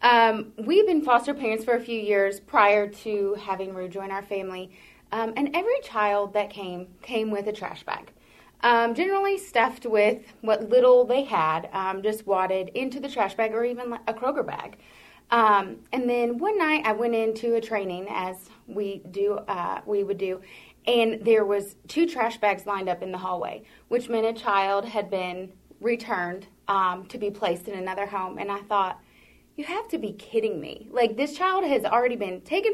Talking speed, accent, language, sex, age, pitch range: 190 wpm, American, English, female, 30-49, 200-245 Hz